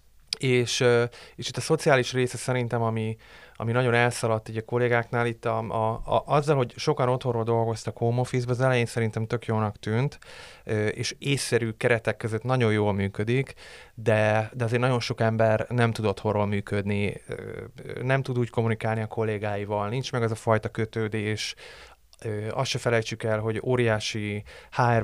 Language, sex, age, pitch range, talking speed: Hungarian, male, 30-49, 110-125 Hz, 160 wpm